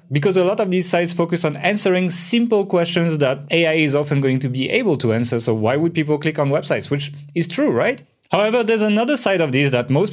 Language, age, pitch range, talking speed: English, 30-49, 130-175 Hz, 235 wpm